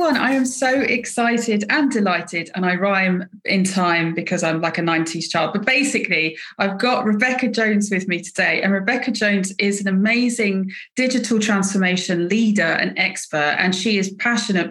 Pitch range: 180-225 Hz